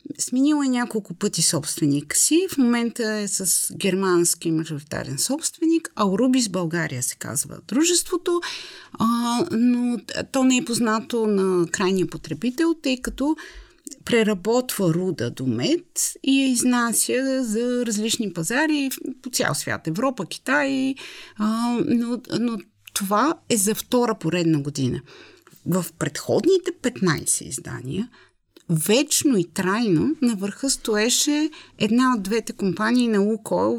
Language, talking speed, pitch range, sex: Bulgarian, 125 wpm, 185-270 Hz, female